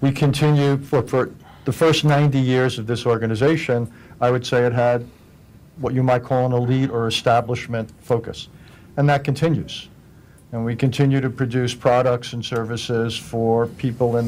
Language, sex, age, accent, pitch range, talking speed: English, male, 50-69, American, 120-140 Hz, 165 wpm